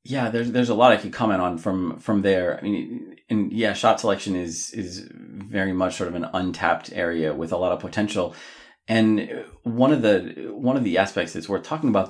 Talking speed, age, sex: 220 wpm, 30-49, male